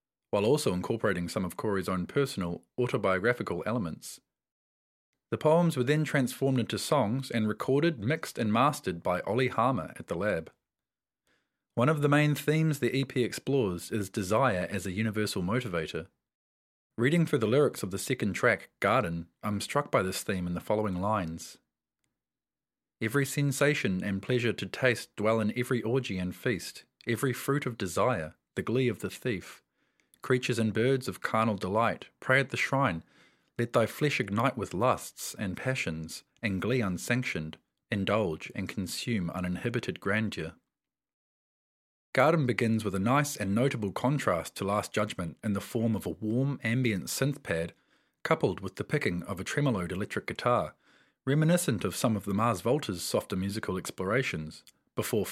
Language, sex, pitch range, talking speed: English, male, 95-130 Hz, 160 wpm